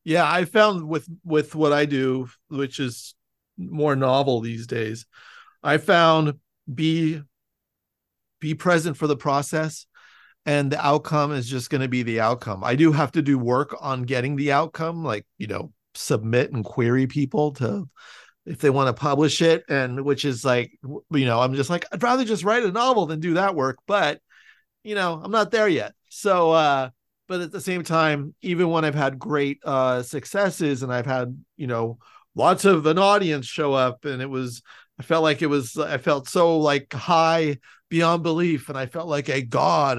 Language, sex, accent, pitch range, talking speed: English, male, American, 130-160 Hz, 190 wpm